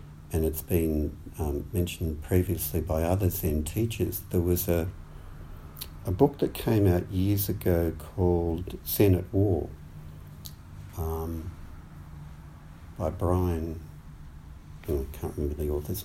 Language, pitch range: English, 75-90 Hz